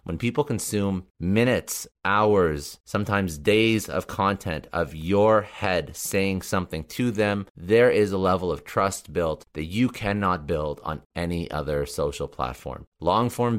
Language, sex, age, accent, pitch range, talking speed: English, male, 30-49, American, 80-100 Hz, 145 wpm